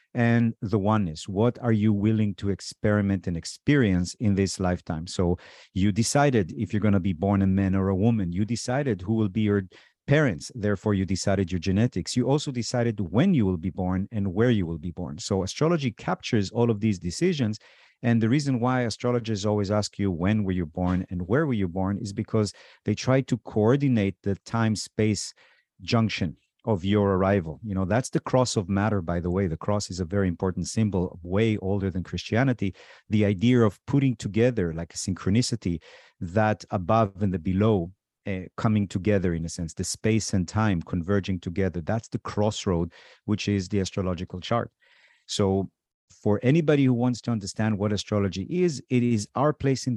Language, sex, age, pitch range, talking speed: English, male, 50-69, 95-115 Hz, 190 wpm